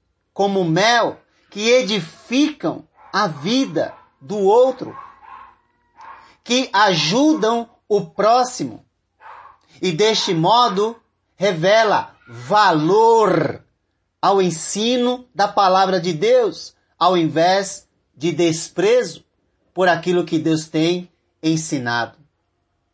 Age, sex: 40-59, male